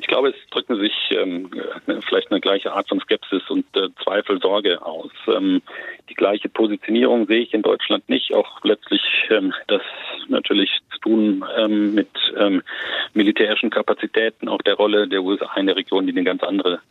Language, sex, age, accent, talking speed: German, male, 40-59, German, 170 wpm